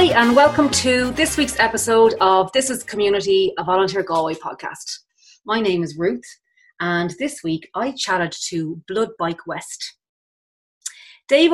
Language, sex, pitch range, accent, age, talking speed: English, female, 165-225 Hz, Irish, 30-49, 150 wpm